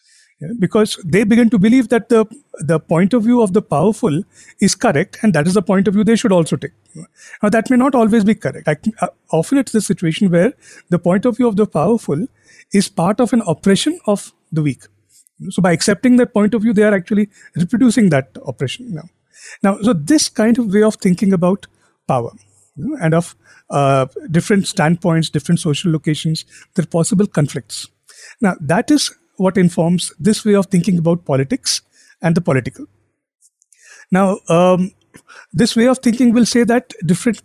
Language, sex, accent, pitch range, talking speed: English, male, Indian, 165-220 Hz, 190 wpm